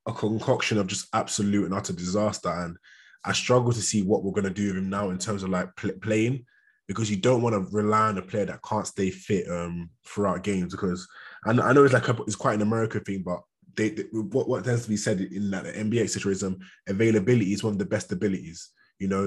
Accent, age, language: British, 20-39, English